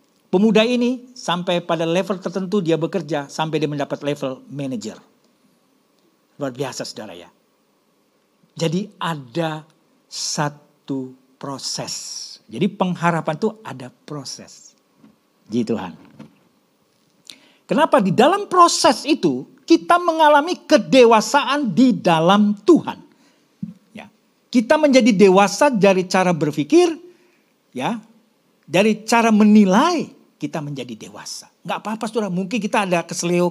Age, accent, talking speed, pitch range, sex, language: 50-69, native, 105 wpm, 165-250 Hz, male, Indonesian